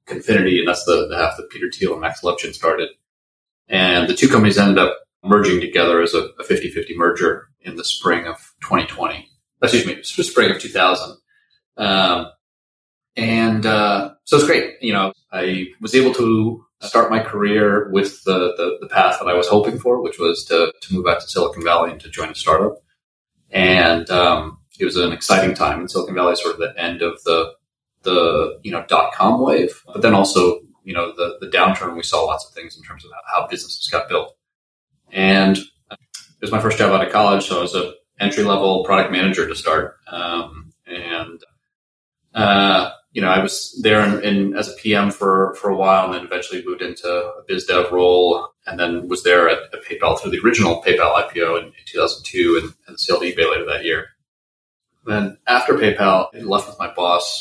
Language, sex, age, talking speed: English, male, 30-49, 200 wpm